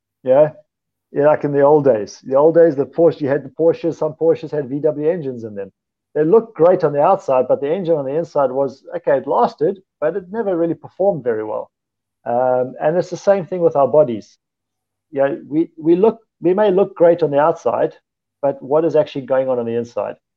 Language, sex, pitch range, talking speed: English, male, 125-170 Hz, 220 wpm